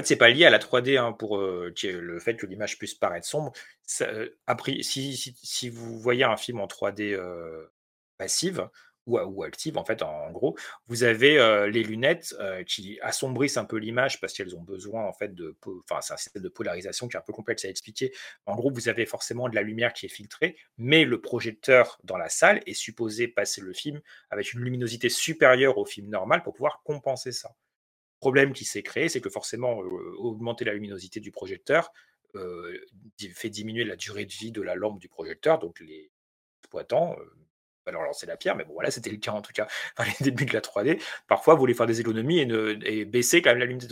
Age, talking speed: 30-49, 220 wpm